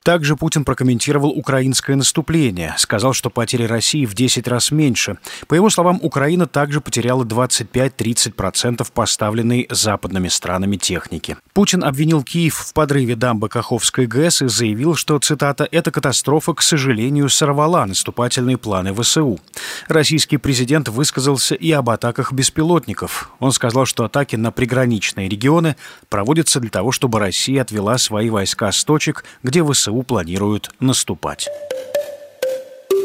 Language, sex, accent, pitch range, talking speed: Russian, male, native, 115-150 Hz, 130 wpm